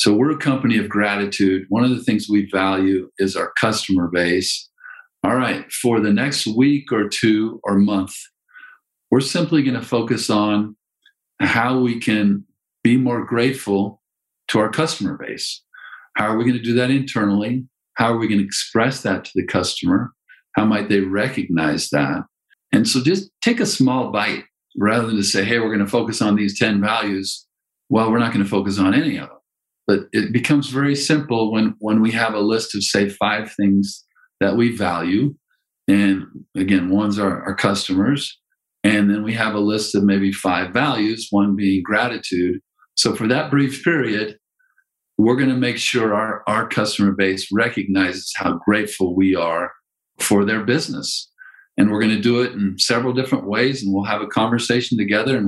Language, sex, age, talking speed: English, male, 50-69, 185 wpm